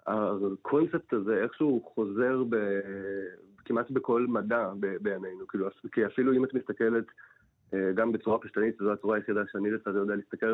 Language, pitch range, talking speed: Hebrew, 105-120 Hz, 150 wpm